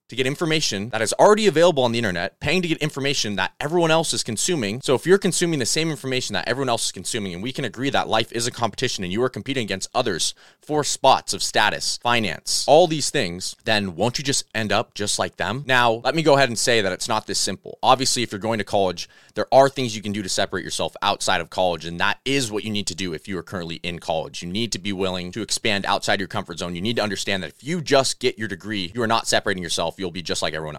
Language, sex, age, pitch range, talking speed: English, male, 20-39, 95-130 Hz, 270 wpm